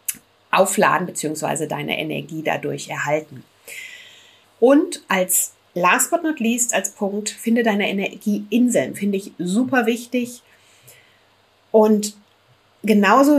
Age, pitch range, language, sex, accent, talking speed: 30-49, 175-225 Hz, German, female, German, 110 wpm